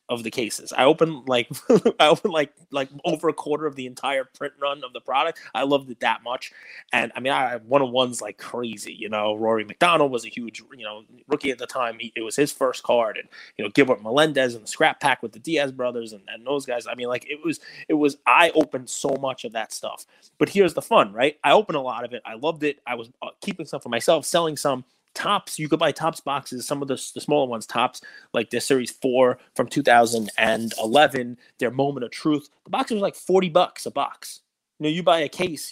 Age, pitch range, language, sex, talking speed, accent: 30-49, 120-160 Hz, English, male, 245 wpm, American